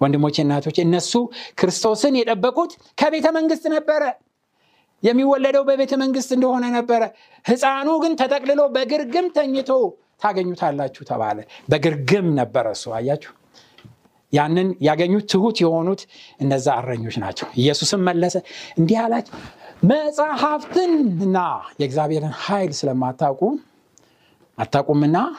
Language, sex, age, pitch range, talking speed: Amharic, male, 60-79, 175-260 Hz, 95 wpm